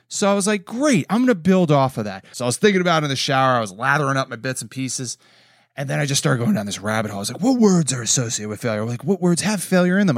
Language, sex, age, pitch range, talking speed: English, male, 30-49, 125-190 Hz, 335 wpm